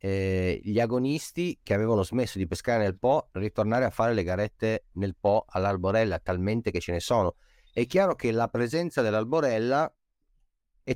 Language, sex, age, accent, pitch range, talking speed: Italian, male, 30-49, native, 95-125 Hz, 160 wpm